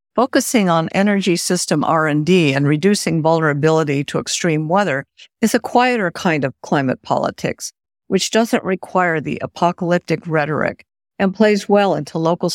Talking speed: 140 wpm